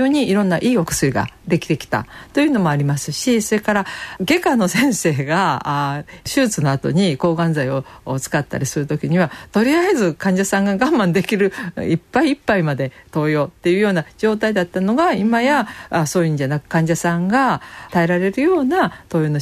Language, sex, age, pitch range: Japanese, female, 50-69, 145-220 Hz